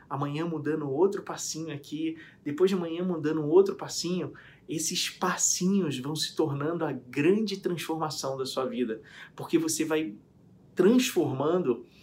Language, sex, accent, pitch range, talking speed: Portuguese, male, Brazilian, 150-195 Hz, 130 wpm